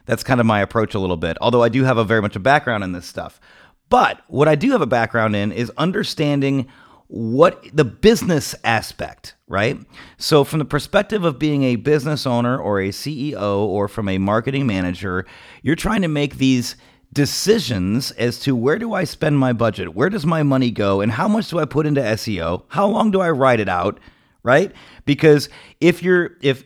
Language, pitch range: English, 105-150 Hz